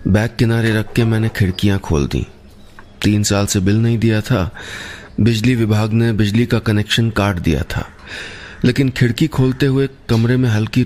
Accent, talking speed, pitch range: native, 170 wpm, 95-115 Hz